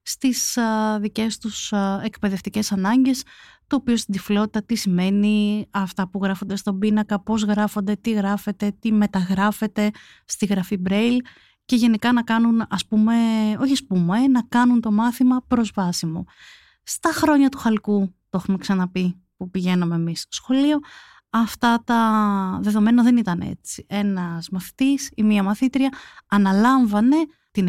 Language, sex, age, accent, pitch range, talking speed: Greek, female, 30-49, native, 200-240 Hz, 135 wpm